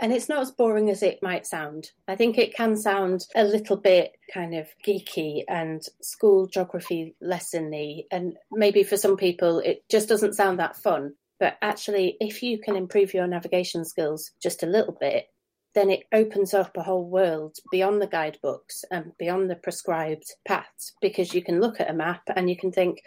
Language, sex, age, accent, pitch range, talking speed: English, female, 30-49, British, 165-200 Hz, 190 wpm